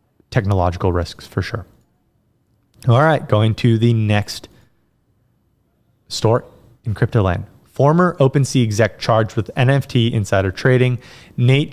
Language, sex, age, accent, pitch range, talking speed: English, male, 20-39, American, 110-130 Hz, 120 wpm